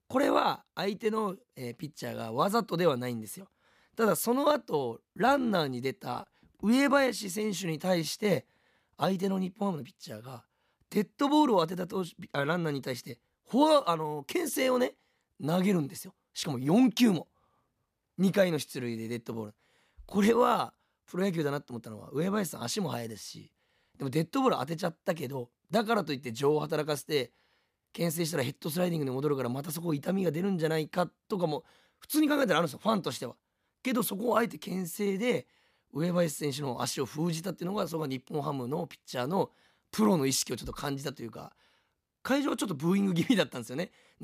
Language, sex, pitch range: Japanese, male, 145-215 Hz